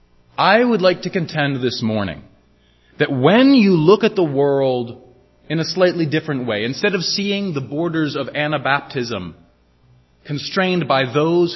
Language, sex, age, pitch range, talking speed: English, male, 30-49, 95-160 Hz, 150 wpm